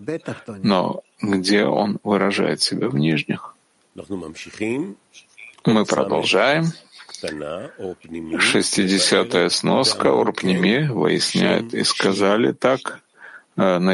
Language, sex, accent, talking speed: Russian, male, native, 75 wpm